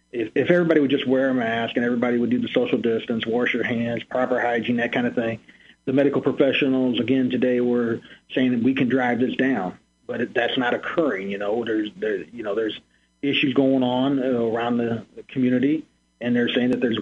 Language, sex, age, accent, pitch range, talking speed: English, male, 40-59, American, 110-130 Hz, 205 wpm